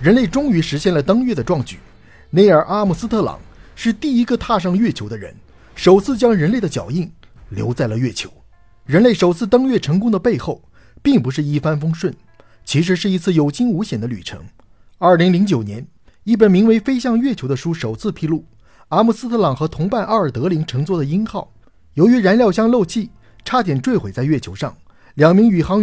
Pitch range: 140-210 Hz